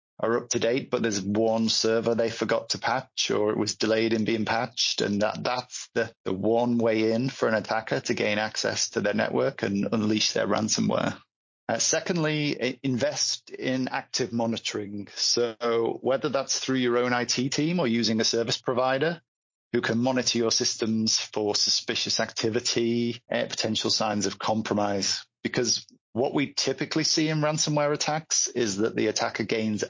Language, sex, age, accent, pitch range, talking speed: English, male, 30-49, British, 110-130 Hz, 170 wpm